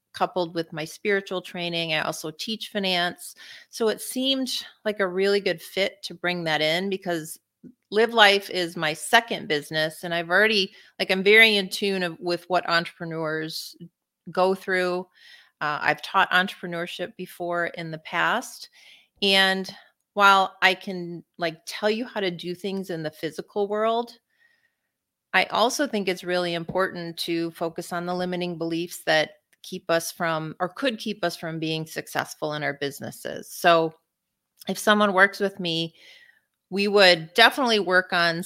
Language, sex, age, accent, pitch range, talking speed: English, female, 30-49, American, 160-195 Hz, 160 wpm